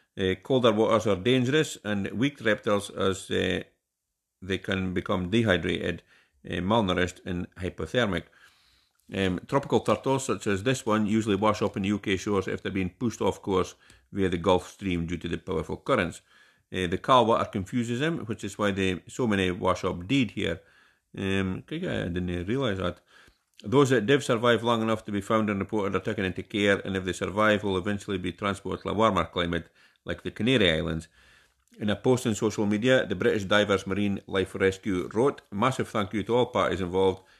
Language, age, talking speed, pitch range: English, 50-69, 195 wpm, 90-110 Hz